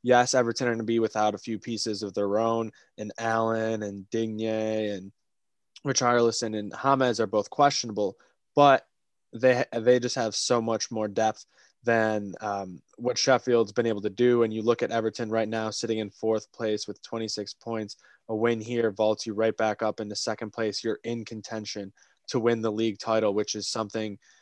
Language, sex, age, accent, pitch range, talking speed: English, male, 20-39, American, 105-115 Hz, 190 wpm